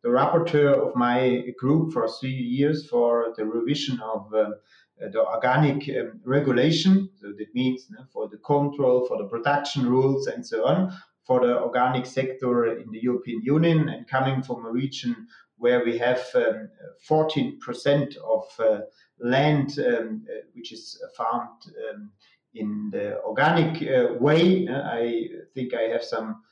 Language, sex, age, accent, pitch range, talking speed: English, male, 30-49, German, 125-180 Hz, 155 wpm